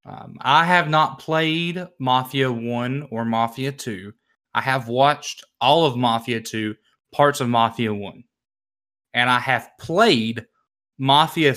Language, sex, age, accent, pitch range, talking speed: English, male, 20-39, American, 115-140 Hz, 135 wpm